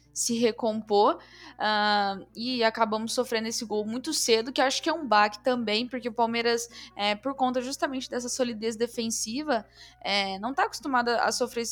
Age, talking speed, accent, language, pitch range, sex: 10-29, 175 wpm, Brazilian, Portuguese, 220-265 Hz, female